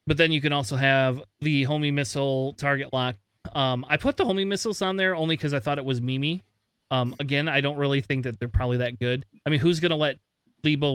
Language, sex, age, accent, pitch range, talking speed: English, male, 30-49, American, 125-150 Hz, 240 wpm